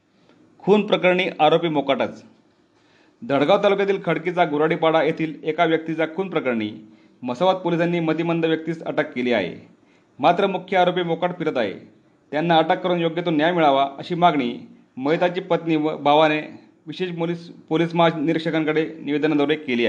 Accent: native